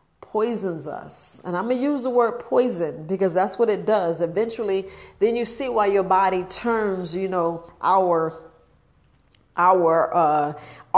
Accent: American